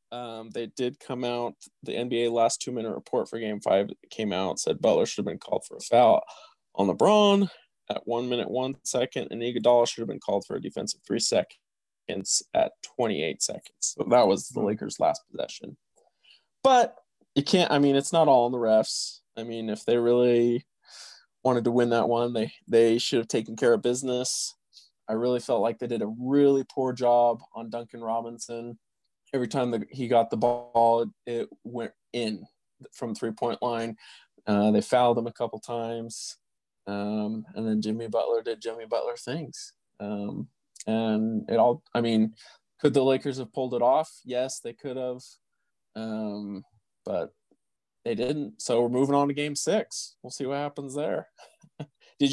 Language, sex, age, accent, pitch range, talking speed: English, male, 20-39, American, 115-140 Hz, 180 wpm